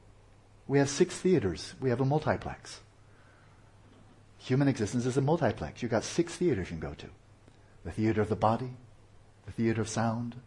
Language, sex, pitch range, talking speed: English, male, 100-115 Hz, 170 wpm